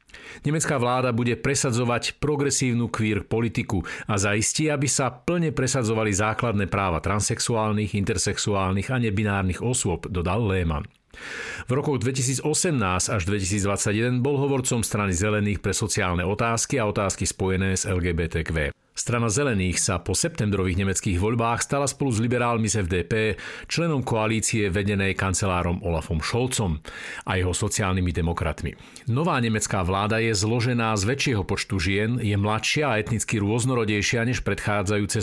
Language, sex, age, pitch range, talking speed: Slovak, male, 50-69, 95-120 Hz, 135 wpm